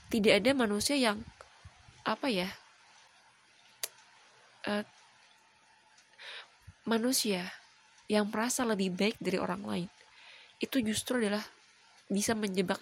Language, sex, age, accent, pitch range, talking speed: Indonesian, female, 20-39, native, 190-235 Hz, 95 wpm